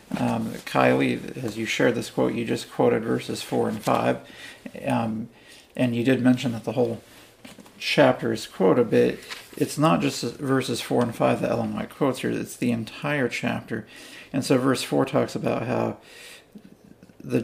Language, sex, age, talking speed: English, male, 40-59, 170 wpm